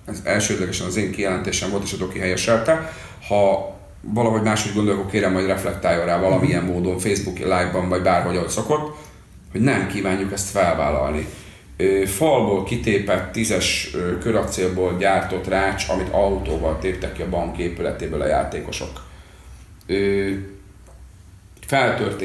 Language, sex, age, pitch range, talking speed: Hungarian, male, 40-59, 90-100 Hz, 125 wpm